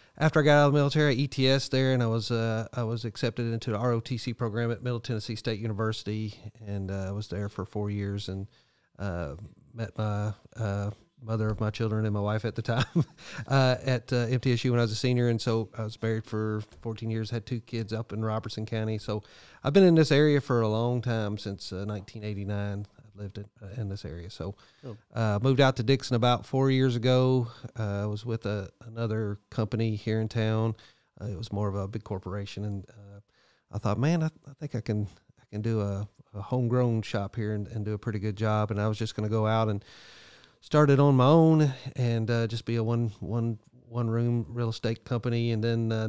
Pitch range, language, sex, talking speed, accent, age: 105-120 Hz, English, male, 225 wpm, American, 40-59